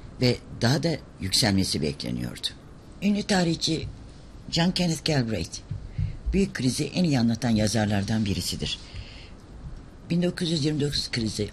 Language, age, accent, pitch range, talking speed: Turkish, 60-79, native, 100-140 Hz, 100 wpm